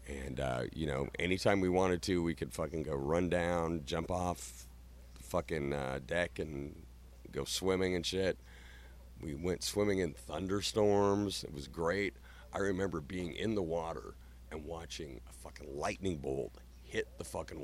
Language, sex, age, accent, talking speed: English, male, 50-69, American, 165 wpm